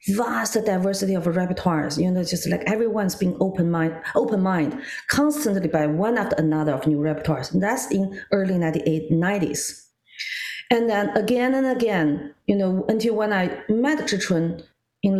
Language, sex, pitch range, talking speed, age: English, female, 160-215 Hz, 160 wpm, 40-59